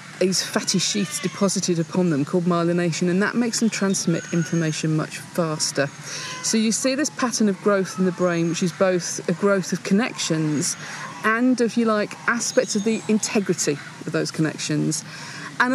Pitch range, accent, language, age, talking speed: 155-190 Hz, British, English, 40-59, 170 wpm